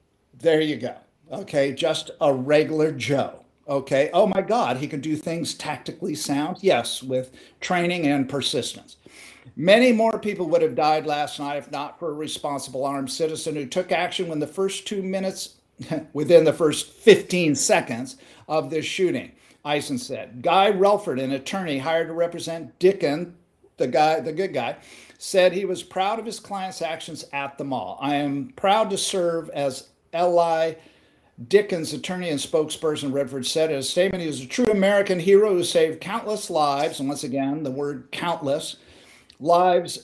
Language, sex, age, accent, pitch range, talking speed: English, male, 50-69, American, 145-190 Hz, 165 wpm